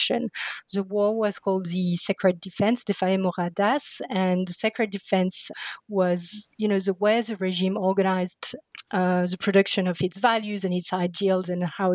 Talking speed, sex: 160 wpm, female